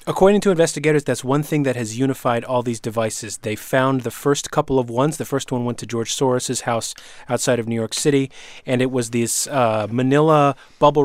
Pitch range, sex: 125-145 Hz, male